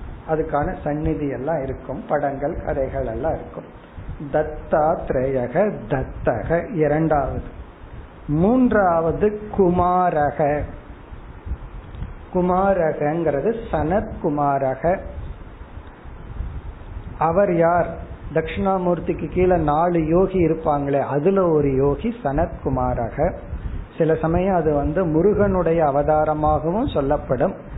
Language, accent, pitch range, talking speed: Tamil, native, 140-180 Hz, 60 wpm